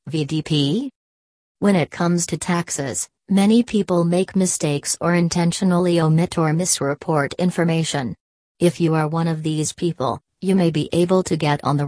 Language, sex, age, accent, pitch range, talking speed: English, female, 40-59, American, 150-175 Hz, 155 wpm